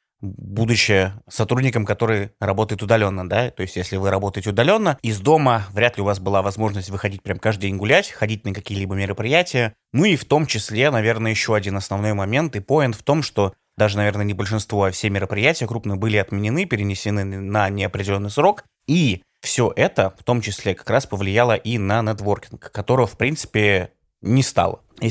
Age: 20-39